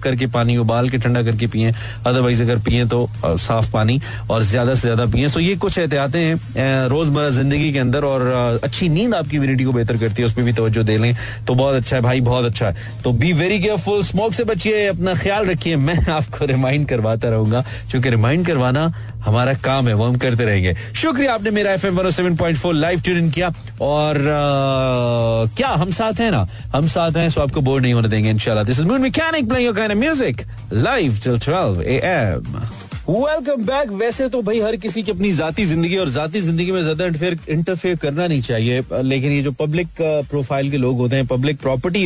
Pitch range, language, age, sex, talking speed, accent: 120-170 Hz, Hindi, 30-49, male, 195 wpm, native